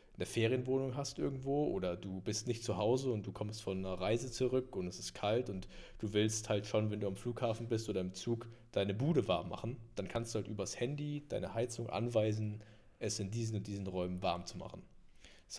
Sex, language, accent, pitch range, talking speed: male, German, German, 100-115 Hz, 220 wpm